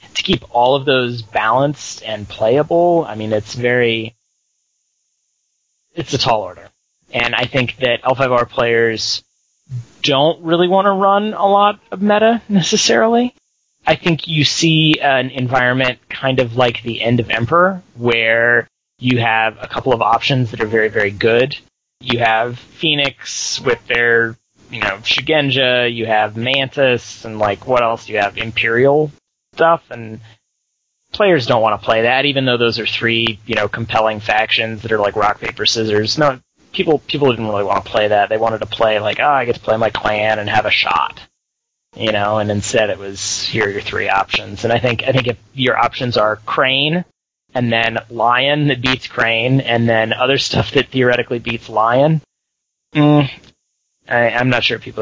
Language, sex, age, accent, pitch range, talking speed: English, male, 30-49, American, 110-135 Hz, 180 wpm